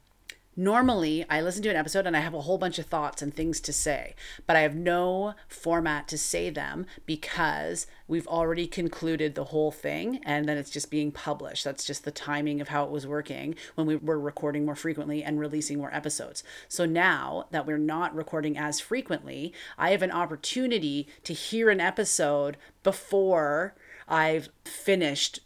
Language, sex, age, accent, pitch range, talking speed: English, female, 30-49, American, 150-195 Hz, 180 wpm